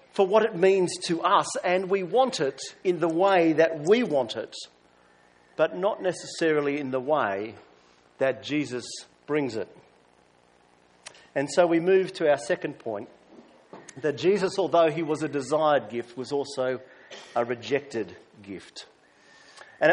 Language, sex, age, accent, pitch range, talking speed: English, male, 50-69, Australian, 140-195 Hz, 150 wpm